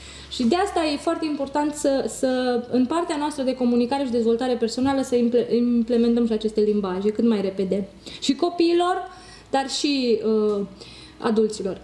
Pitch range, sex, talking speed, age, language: 230-315 Hz, female, 145 wpm, 20-39, Romanian